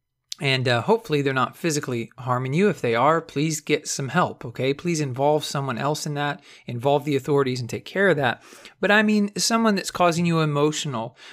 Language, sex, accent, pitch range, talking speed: English, male, American, 135-190 Hz, 200 wpm